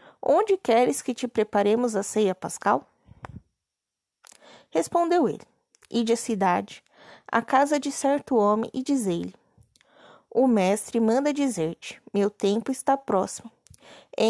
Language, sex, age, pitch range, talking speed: Portuguese, female, 20-39, 210-265 Hz, 120 wpm